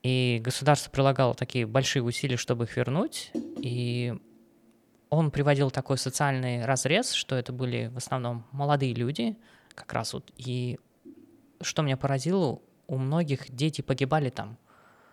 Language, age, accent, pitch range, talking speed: Russian, 20-39, native, 125-140 Hz, 135 wpm